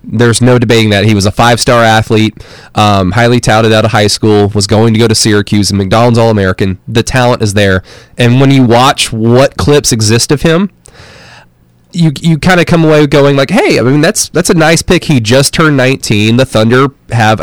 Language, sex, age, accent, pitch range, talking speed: English, male, 20-39, American, 110-145 Hz, 210 wpm